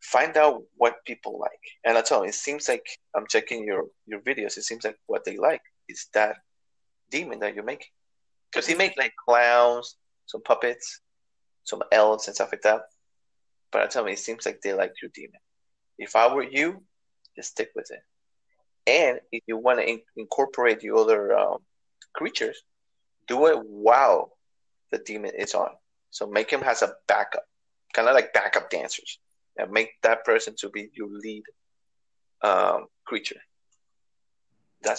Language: English